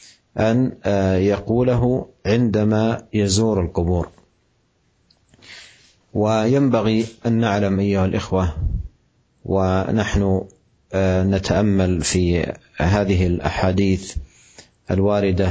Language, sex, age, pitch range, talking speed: Indonesian, male, 50-69, 95-115 Hz, 60 wpm